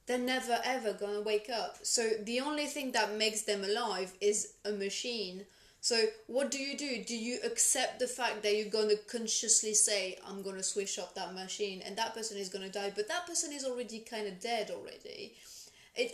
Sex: female